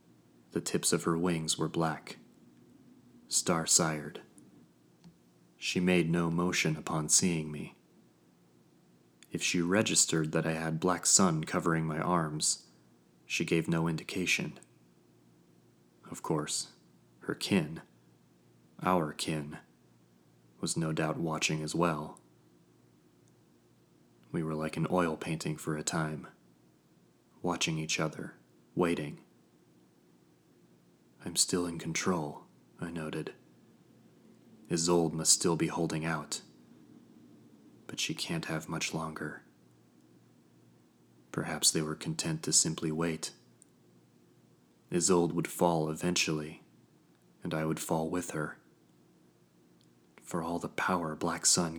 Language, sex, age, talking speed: English, male, 30-49, 110 wpm